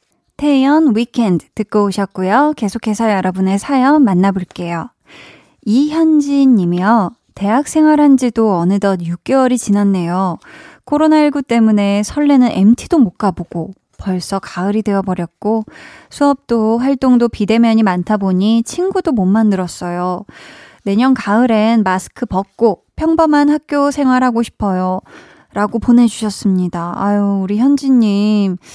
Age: 20-39